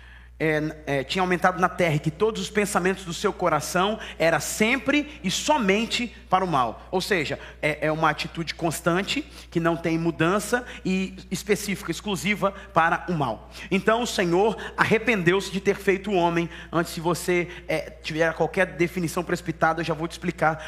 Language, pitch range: Portuguese, 140-185 Hz